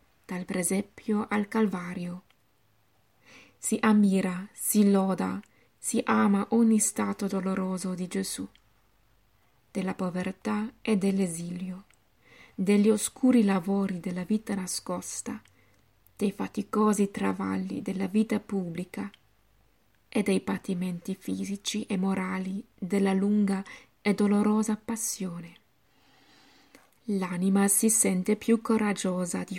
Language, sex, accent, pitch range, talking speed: Italian, female, native, 185-210 Hz, 95 wpm